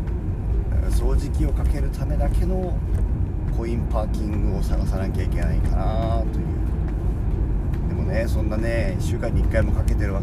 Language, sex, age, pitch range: Japanese, male, 40-59, 80-100 Hz